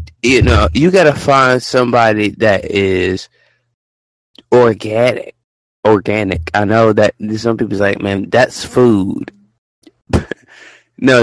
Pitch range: 95-120 Hz